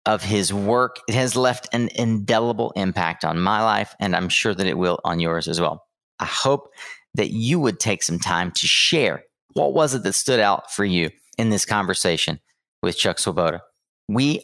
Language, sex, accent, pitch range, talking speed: English, male, American, 95-125 Hz, 195 wpm